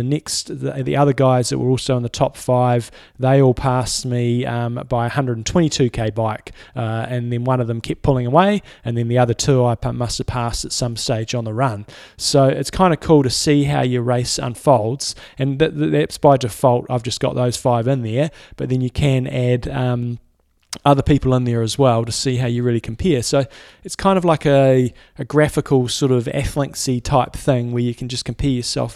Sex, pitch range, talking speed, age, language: male, 120-135 Hz, 210 wpm, 20-39, English